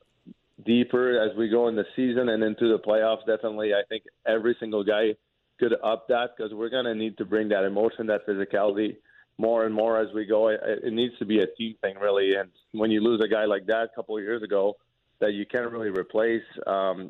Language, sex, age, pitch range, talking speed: English, male, 30-49, 105-115 Hz, 230 wpm